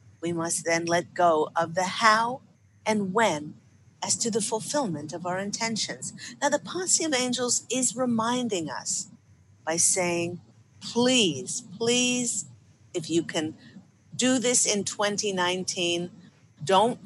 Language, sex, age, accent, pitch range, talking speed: English, female, 50-69, American, 160-215 Hz, 130 wpm